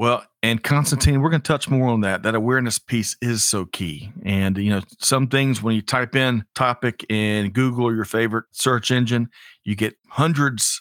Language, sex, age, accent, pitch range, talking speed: English, male, 40-59, American, 100-125 Hz, 200 wpm